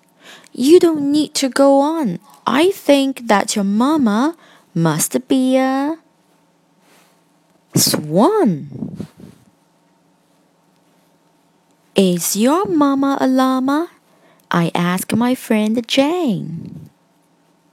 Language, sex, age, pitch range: Chinese, female, 20-39, 175-275 Hz